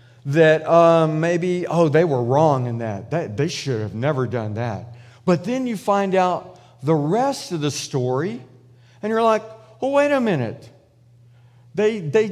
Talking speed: 170 wpm